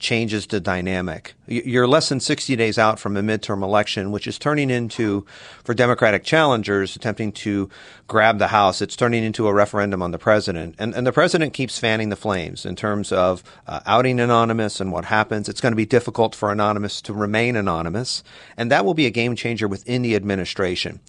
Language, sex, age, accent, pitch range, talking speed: English, male, 40-59, American, 105-125 Hz, 200 wpm